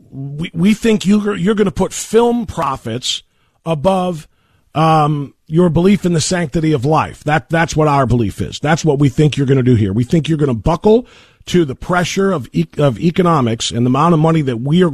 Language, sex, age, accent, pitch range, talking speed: English, male, 40-59, American, 135-190 Hz, 220 wpm